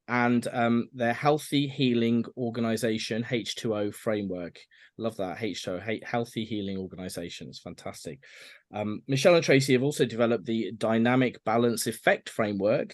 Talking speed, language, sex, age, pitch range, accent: 130 wpm, English, male, 20-39, 110-140 Hz, British